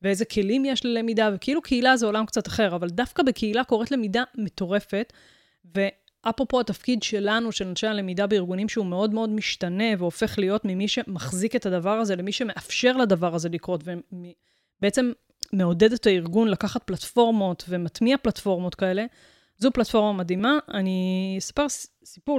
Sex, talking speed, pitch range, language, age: female, 145 wpm, 195-240 Hz, Hebrew, 20-39